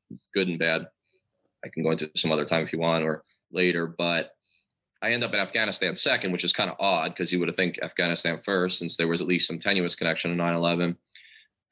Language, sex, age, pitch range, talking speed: English, male, 20-39, 85-95 Hz, 220 wpm